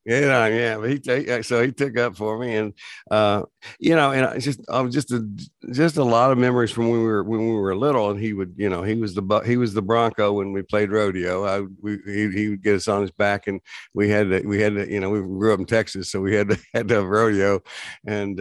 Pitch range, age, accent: 100-115 Hz, 60-79, American